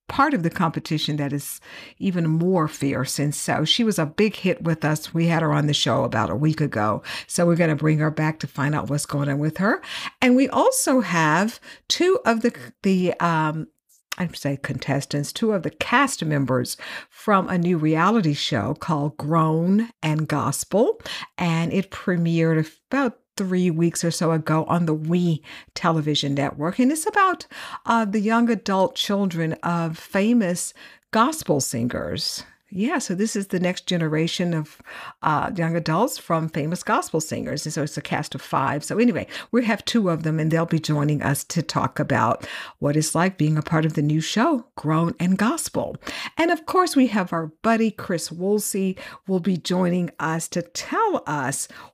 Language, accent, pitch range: English, American, 155-210 Hz